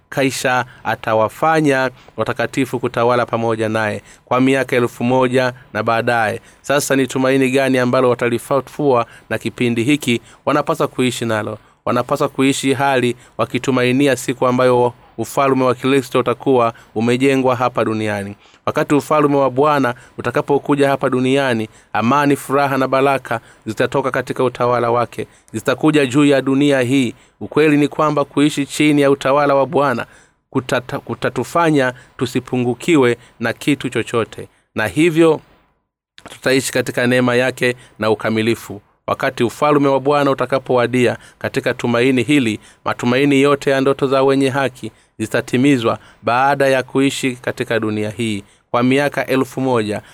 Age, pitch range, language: 30-49, 115-140 Hz, Swahili